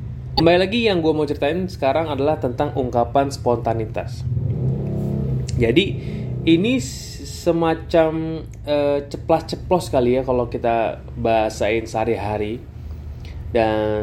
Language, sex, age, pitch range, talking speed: Indonesian, male, 20-39, 100-140 Hz, 100 wpm